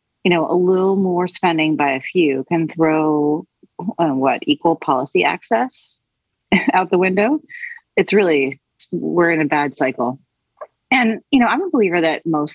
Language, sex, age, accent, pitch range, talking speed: English, female, 30-49, American, 155-195 Hz, 165 wpm